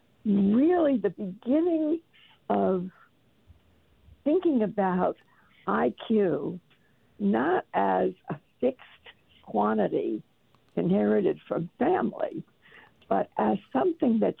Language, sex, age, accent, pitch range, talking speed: English, female, 60-79, American, 180-245 Hz, 80 wpm